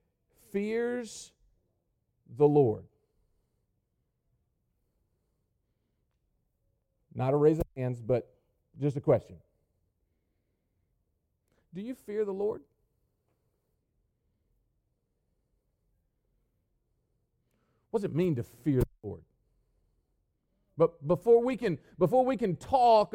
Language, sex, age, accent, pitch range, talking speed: English, male, 50-69, American, 115-170 Hz, 85 wpm